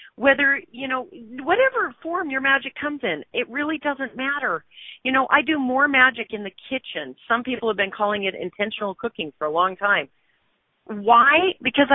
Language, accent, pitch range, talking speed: English, American, 190-265 Hz, 180 wpm